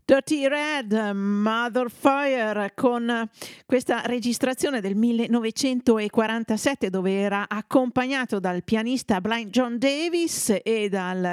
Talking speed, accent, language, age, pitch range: 95 wpm, native, Italian, 50-69, 200-250 Hz